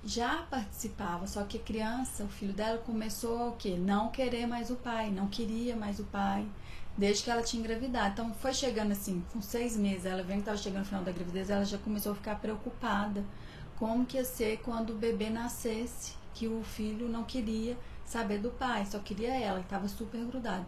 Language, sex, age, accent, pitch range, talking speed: Portuguese, female, 30-49, Brazilian, 200-235 Hz, 205 wpm